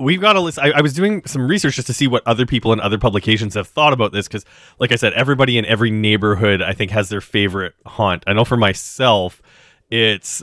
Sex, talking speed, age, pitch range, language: male, 240 wpm, 30-49, 100-130 Hz, English